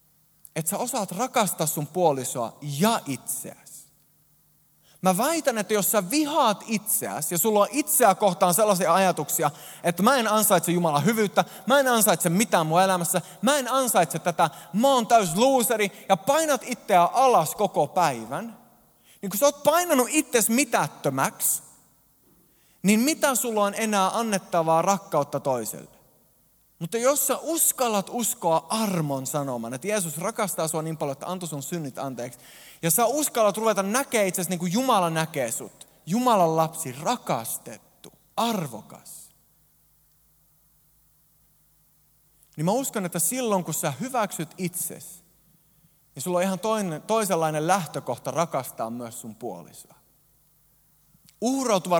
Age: 20-39